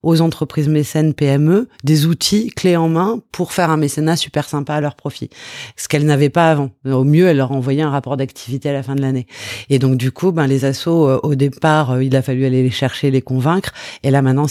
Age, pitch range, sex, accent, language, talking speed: 30-49, 130-155 Hz, female, French, French, 230 wpm